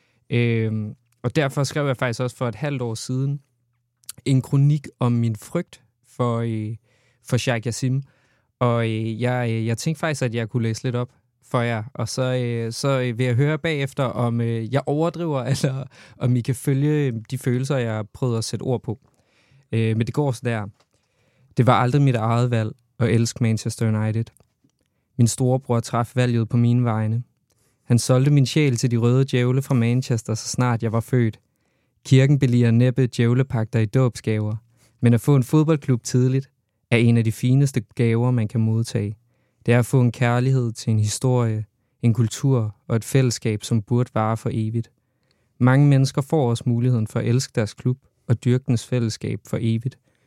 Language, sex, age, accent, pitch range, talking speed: Danish, male, 20-39, native, 115-130 Hz, 180 wpm